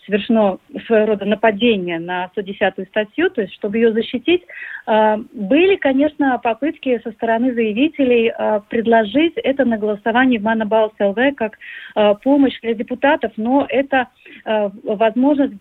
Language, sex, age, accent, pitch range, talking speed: Russian, female, 30-49, native, 220-275 Hz, 120 wpm